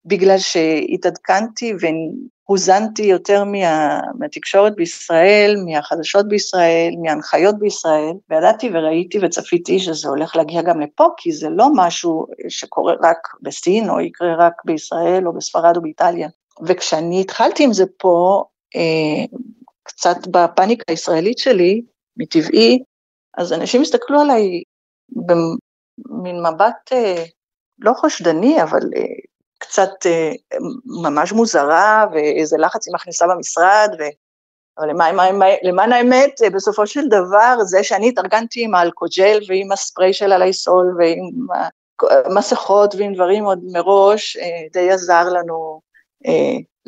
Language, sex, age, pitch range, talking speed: Hebrew, female, 50-69, 170-210 Hz, 125 wpm